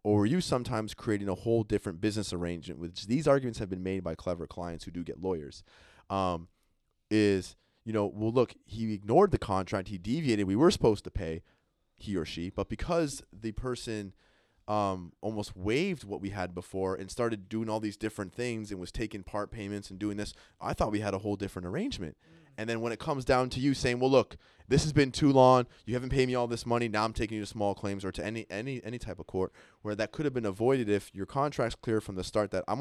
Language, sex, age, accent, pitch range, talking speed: English, male, 20-39, American, 100-120 Hz, 240 wpm